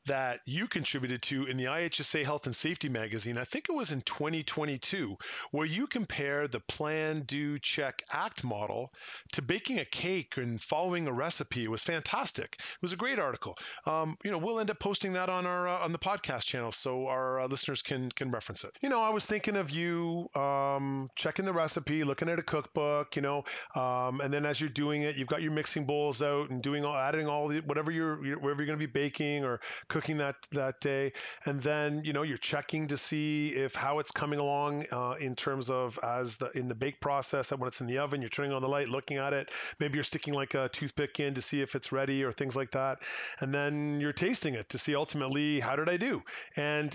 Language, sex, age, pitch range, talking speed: English, male, 30-49, 135-155 Hz, 230 wpm